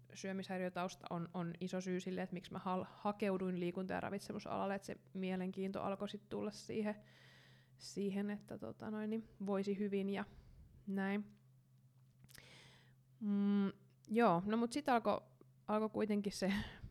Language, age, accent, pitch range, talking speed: Finnish, 20-39, native, 160-200 Hz, 140 wpm